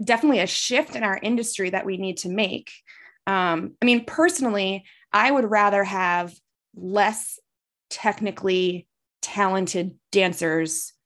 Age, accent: 20-39, American